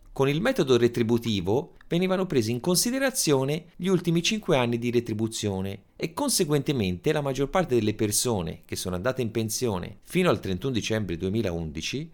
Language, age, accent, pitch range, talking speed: Italian, 30-49, native, 95-160 Hz, 155 wpm